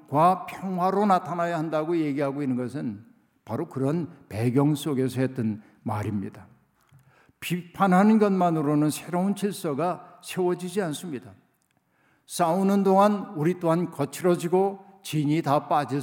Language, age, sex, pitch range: Korean, 60-79, male, 150-185 Hz